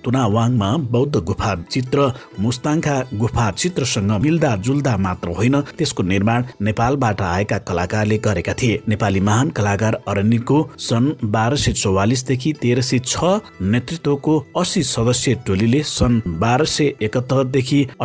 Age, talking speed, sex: 60-79, 120 wpm, male